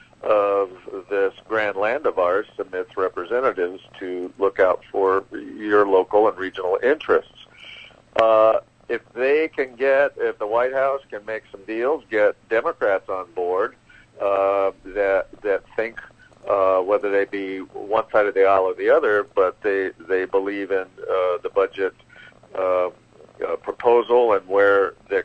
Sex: male